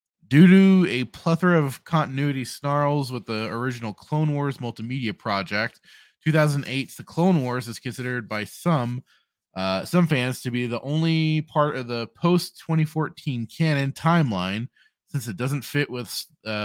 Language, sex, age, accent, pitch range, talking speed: English, male, 20-39, American, 110-150 Hz, 150 wpm